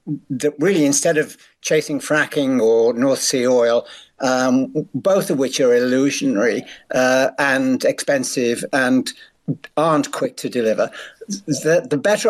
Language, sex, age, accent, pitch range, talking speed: English, male, 60-79, British, 135-185 Hz, 130 wpm